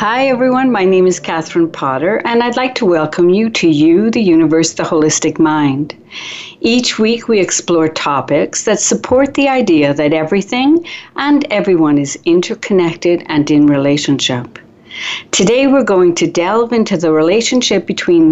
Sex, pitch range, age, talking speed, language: female, 165-235 Hz, 60-79, 155 wpm, English